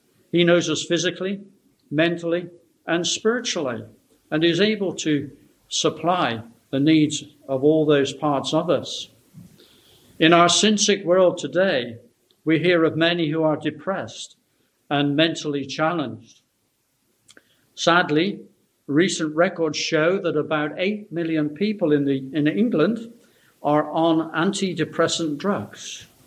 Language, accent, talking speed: English, British, 120 wpm